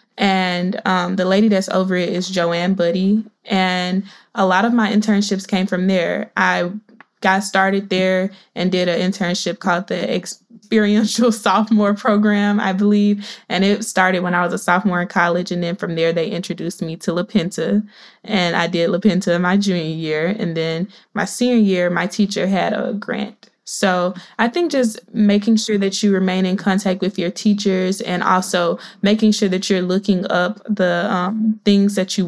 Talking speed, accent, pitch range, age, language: 180 wpm, American, 185-210 Hz, 20-39, English